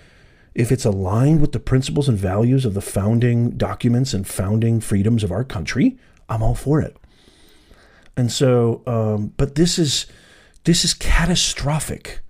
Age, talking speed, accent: 40-59, 150 wpm, American